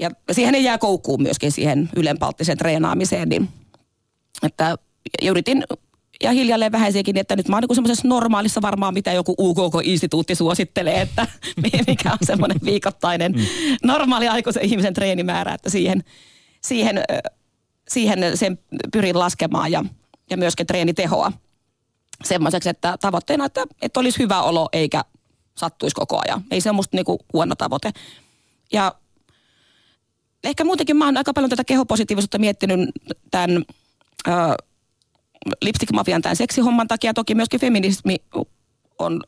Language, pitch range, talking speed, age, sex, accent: Finnish, 175-235 Hz, 120 wpm, 30-49, female, native